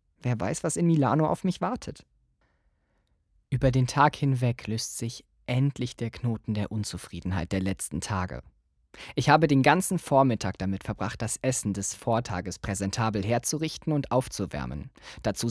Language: German